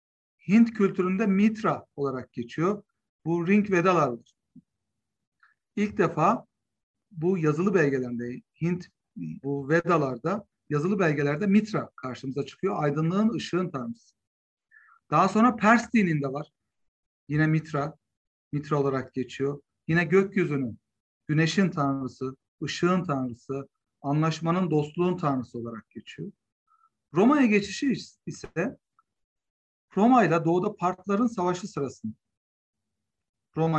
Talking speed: 100 wpm